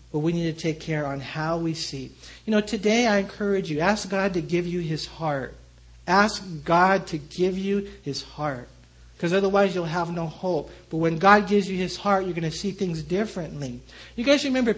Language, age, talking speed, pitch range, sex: English, 50-69, 210 wpm, 155-215 Hz, male